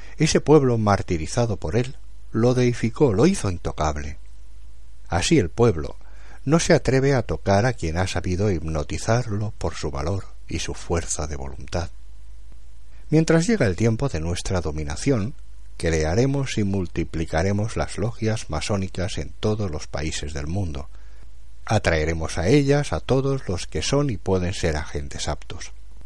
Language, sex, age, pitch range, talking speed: Spanish, male, 60-79, 80-115 Hz, 145 wpm